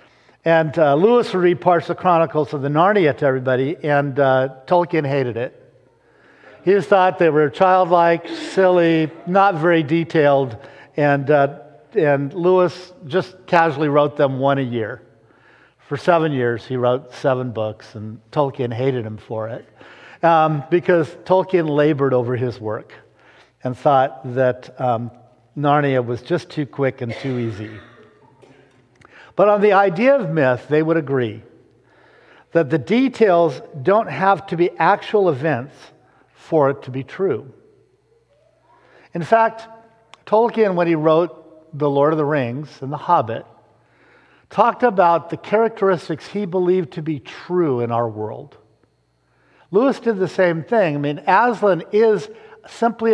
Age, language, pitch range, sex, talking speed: 50-69, English, 135-180 Hz, male, 145 wpm